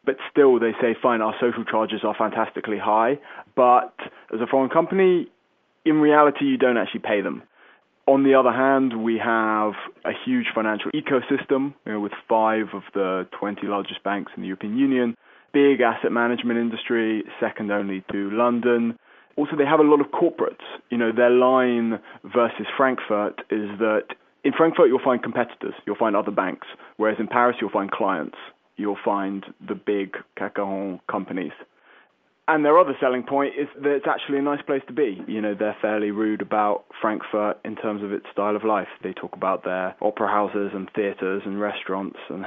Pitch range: 105-135 Hz